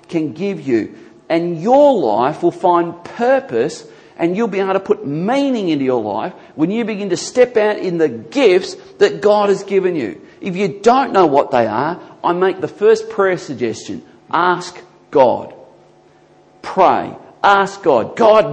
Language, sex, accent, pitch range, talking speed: English, male, Australian, 160-210 Hz, 170 wpm